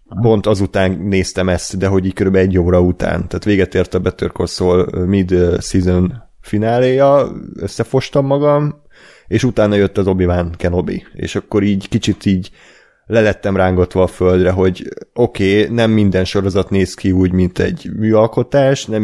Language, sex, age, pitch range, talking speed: Hungarian, male, 30-49, 95-115 Hz, 160 wpm